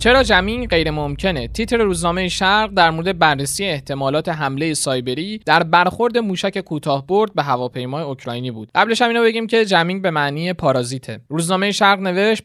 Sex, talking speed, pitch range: male, 160 wpm, 145-195 Hz